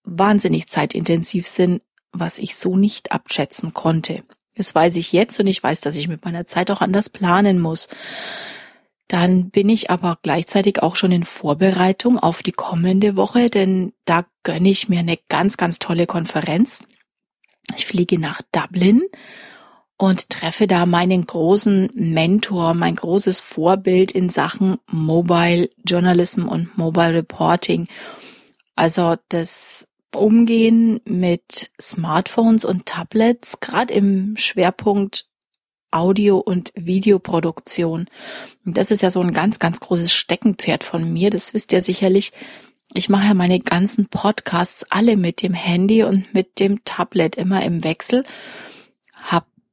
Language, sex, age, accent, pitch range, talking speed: German, female, 30-49, German, 175-205 Hz, 140 wpm